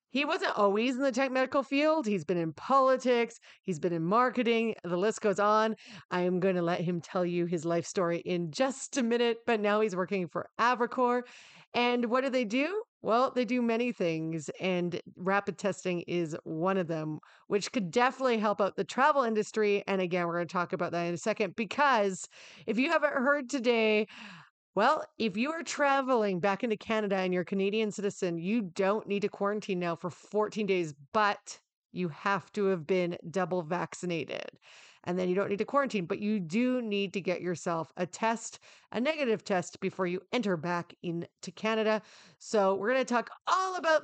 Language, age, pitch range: English, 40-59, 185-245 Hz